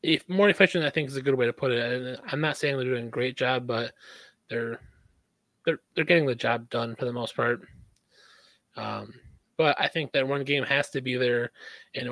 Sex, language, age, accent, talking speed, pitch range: male, English, 20-39, American, 220 wpm, 115-140 Hz